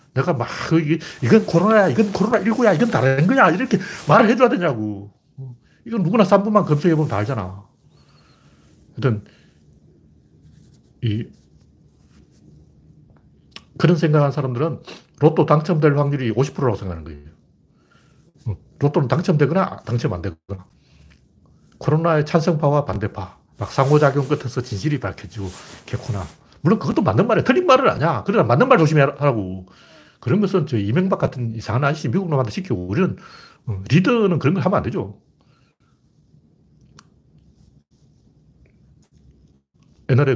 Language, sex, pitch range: Korean, male, 115-165 Hz